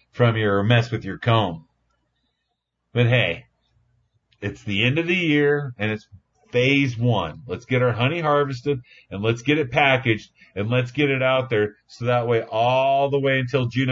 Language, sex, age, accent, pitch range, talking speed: English, male, 40-59, American, 120-145 Hz, 180 wpm